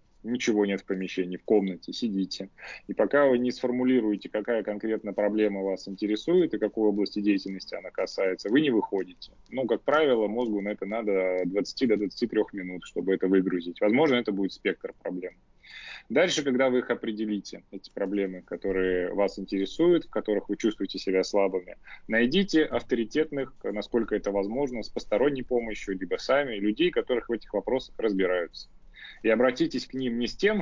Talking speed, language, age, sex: 165 wpm, Russian, 20-39, male